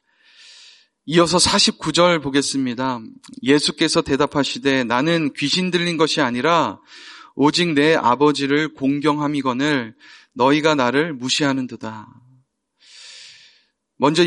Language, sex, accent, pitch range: Korean, male, native, 135-170 Hz